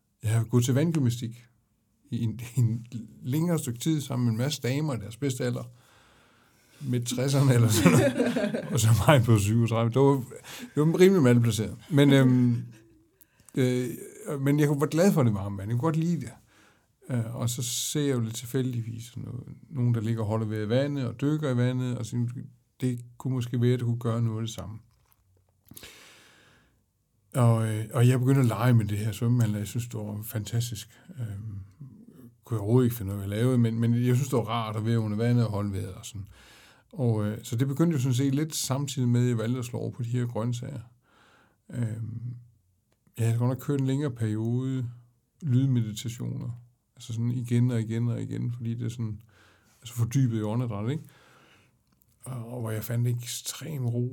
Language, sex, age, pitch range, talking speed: Danish, male, 60-79, 115-130 Hz, 195 wpm